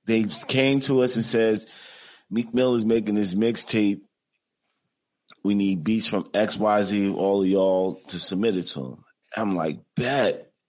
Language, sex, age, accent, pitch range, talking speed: English, male, 30-49, American, 105-140 Hz, 155 wpm